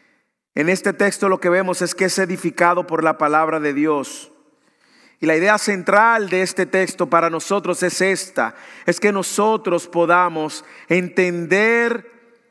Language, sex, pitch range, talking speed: English, male, 180-230 Hz, 150 wpm